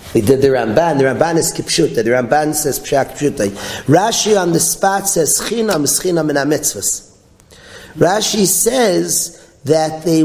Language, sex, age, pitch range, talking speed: English, male, 40-59, 150-205 Hz, 150 wpm